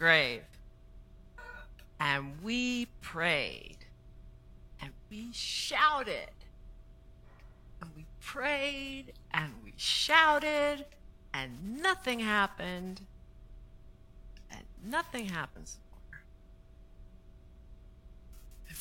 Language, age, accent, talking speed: English, 50-69, American, 65 wpm